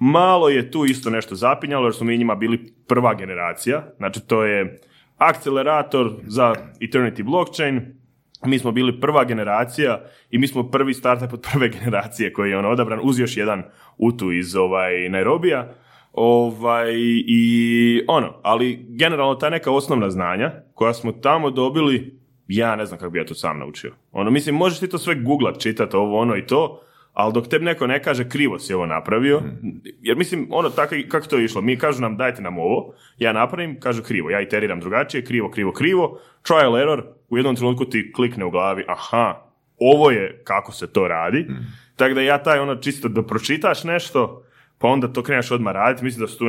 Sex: male